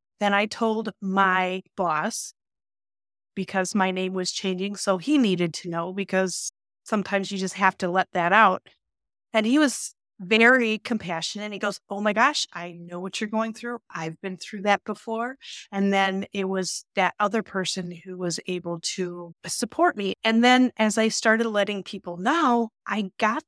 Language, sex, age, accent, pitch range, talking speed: English, female, 30-49, American, 185-225 Hz, 175 wpm